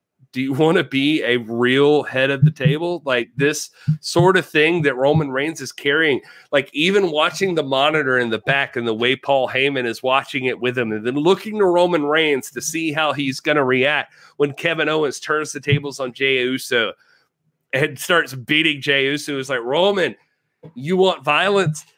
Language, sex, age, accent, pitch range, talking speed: English, male, 30-49, American, 140-180 Hz, 195 wpm